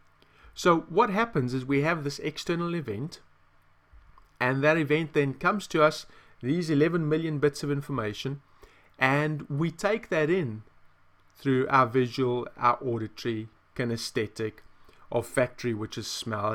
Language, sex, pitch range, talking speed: English, male, 105-145 Hz, 140 wpm